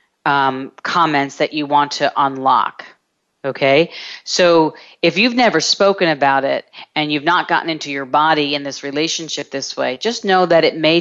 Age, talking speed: 40-59, 175 wpm